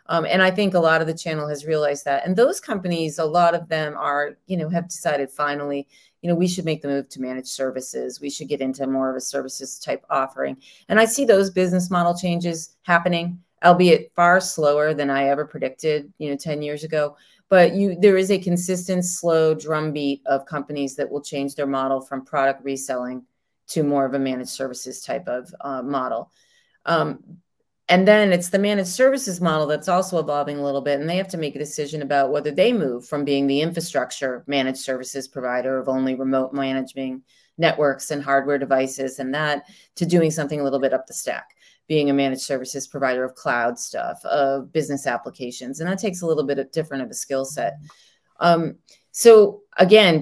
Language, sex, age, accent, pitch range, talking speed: English, female, 30-49, American, 135-175 Hz, 205 wpm